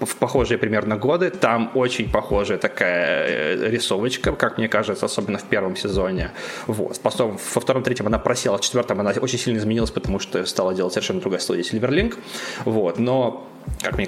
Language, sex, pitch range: Russian, male, 105-130 Hz